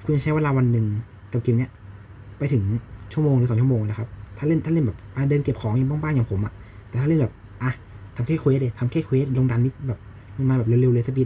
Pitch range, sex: 105-130 Hz, male